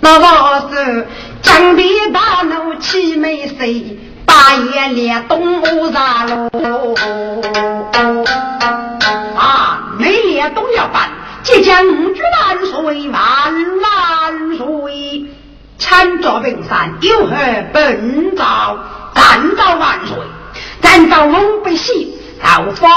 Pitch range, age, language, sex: 285-375 Hz, 50-69, Chinese, female